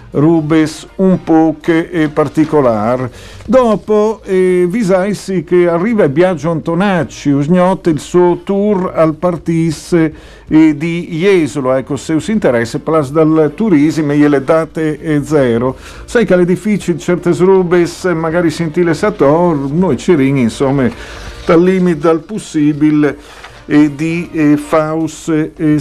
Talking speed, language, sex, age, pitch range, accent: 130 wpm, Italian, male, 50-69, 150-175 Hz, native